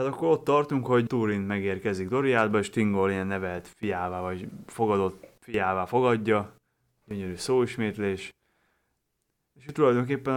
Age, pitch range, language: 20-39, 100-115 Hz, Hungarian